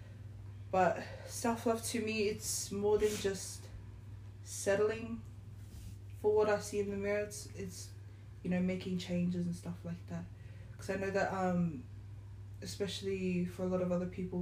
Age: 20-39